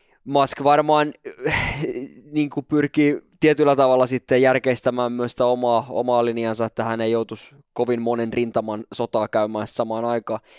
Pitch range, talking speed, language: 115-145 Hz, 140 wpm, Finnish